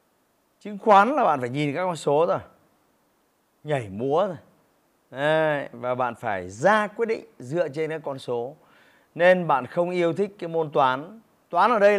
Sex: male